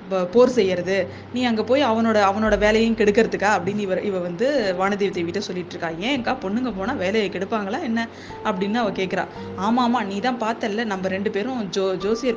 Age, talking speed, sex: 20-39, 165 wpm, female